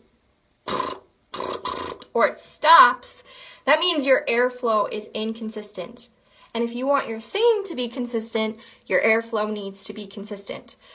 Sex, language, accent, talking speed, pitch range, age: female, English, American, 130 wpm, 205-275 Hz, 20-39